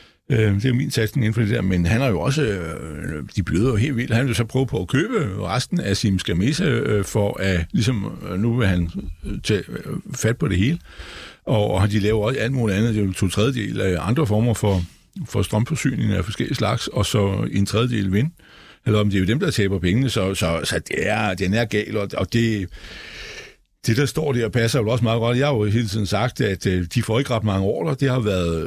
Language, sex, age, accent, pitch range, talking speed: Danish, male, 60-79, native, 95-125 Hz, 235 wpm